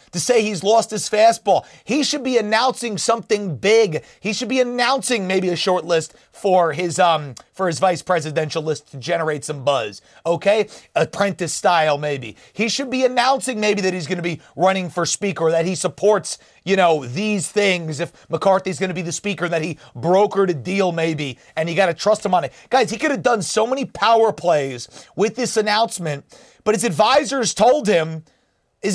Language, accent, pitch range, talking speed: English, American, 170-215 Hz, 195 wpm